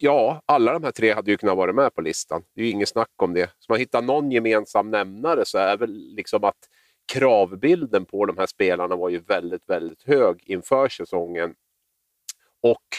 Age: 40-59